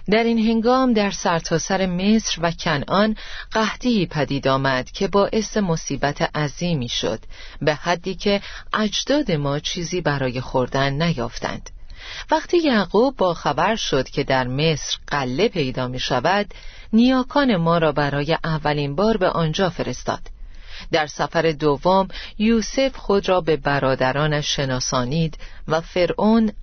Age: 40-59